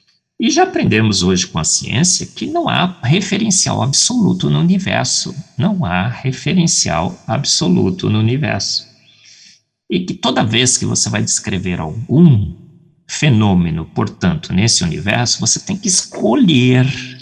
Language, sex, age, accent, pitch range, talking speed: Portuguese, male, 50-69, Brazilian, 95-155 Hz, 130 wpm